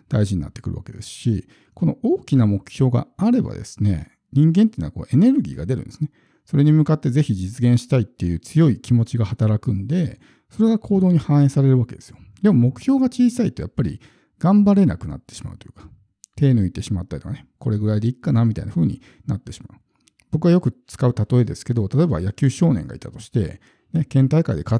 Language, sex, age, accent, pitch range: Japanese, male, 50-69, native, 105-145 Hz